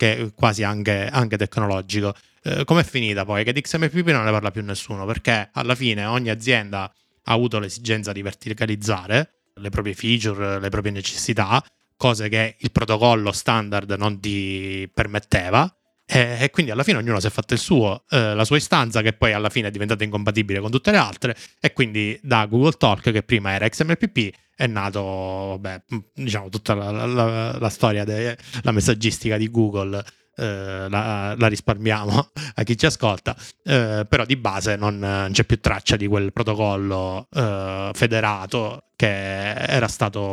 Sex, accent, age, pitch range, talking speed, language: male, native, 20-39, 100-120 Hz, 165 wpm, Italian